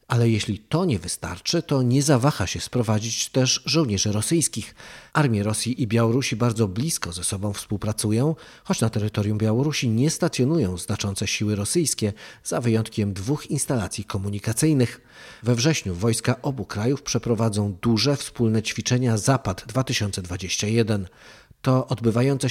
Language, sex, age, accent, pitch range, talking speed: Polish, male, 40-59, native, 105-130 Hz, 130 wpm